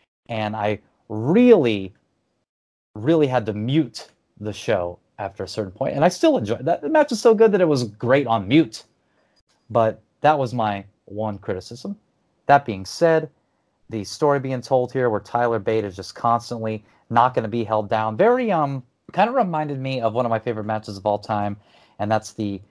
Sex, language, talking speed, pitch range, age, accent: male, English, 190 wpm, 100-120 Hz, 30-49, American